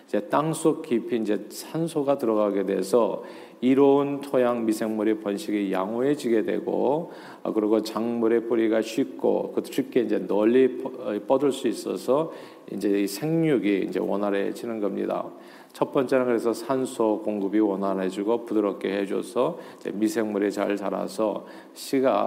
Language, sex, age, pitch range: Korean, male, 40-59, 105-130 Hz